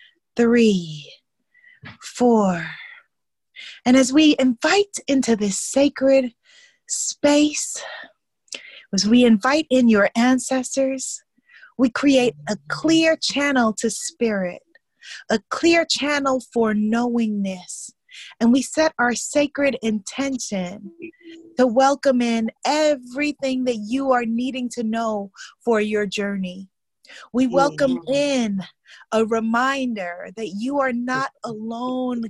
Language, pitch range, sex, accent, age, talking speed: English, 225-270 Hz, female, American, 30-49, 105 wpm